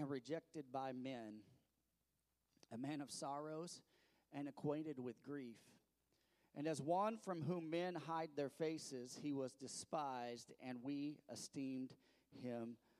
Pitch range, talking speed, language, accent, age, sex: 120-150 Hz, 130 wpm, English, American, 40-59, male